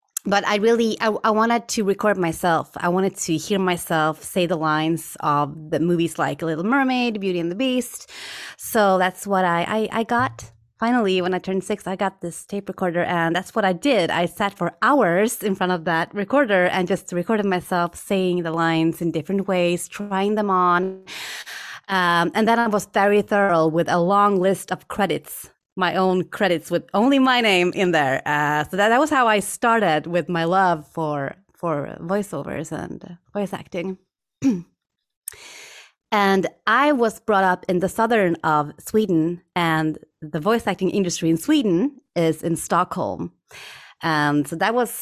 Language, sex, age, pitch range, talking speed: English, female, 20-39, 165-205 Hz, 180 wpm